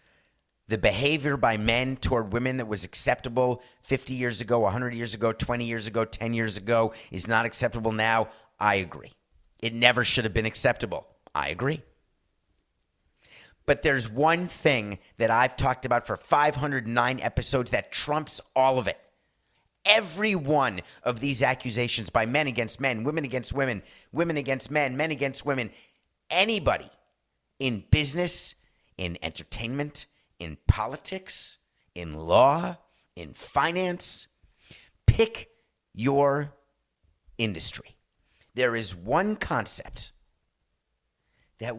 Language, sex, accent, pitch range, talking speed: English, male, American, 100-135 Hz, 125 wpm